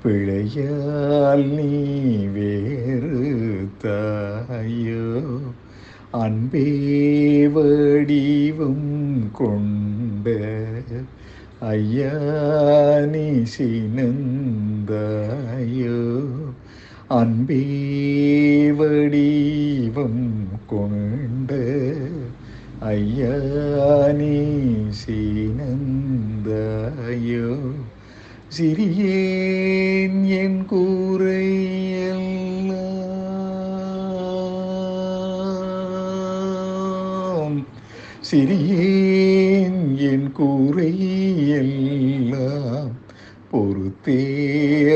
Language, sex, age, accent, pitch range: Tamil, male, 60-79, native, 115-155 Hz